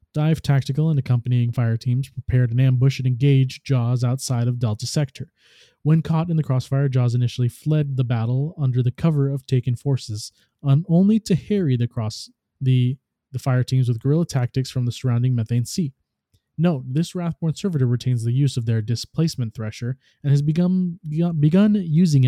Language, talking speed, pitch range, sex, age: English, 180 wpm, 120-145 Hz, male, 20-39